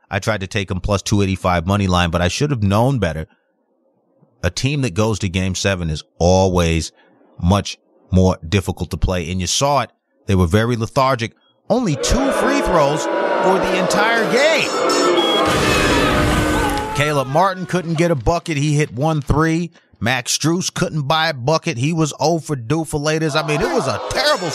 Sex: male